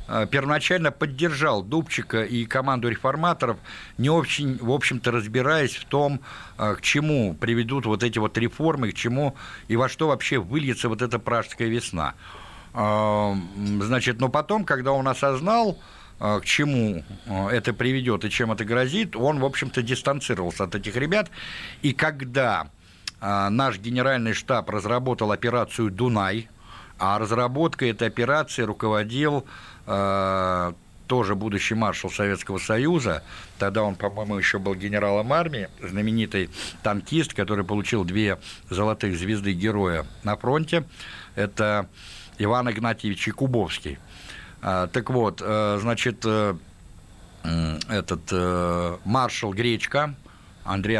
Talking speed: 115 wpm